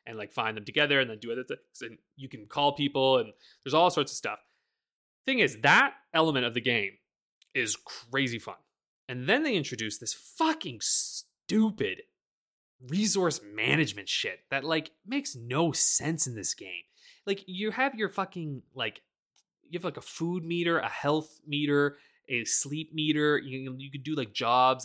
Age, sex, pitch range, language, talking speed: 20-39, male, 130-190 Hz, English, 175 wpm